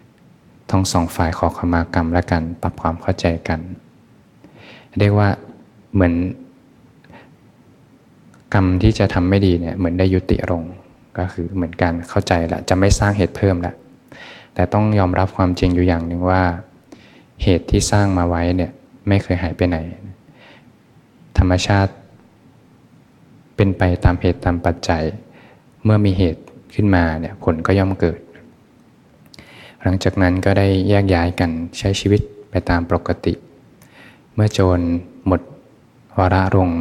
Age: 20-39